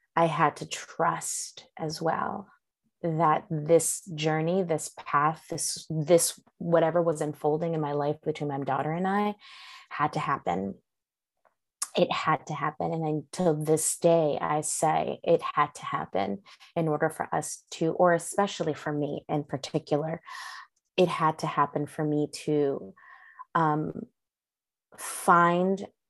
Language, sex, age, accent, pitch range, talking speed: English, female, 20-39, American, 155-180 Hz, 140 wpm